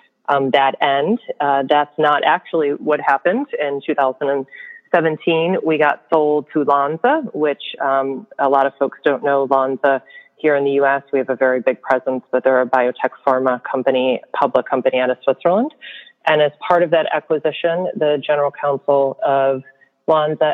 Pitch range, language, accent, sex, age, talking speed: 135-150 Hz, English, American, female, 30-49, 165 wpm